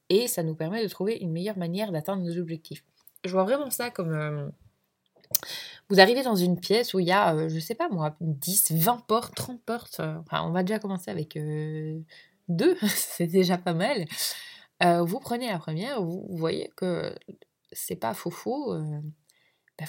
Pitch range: 165-215 Hz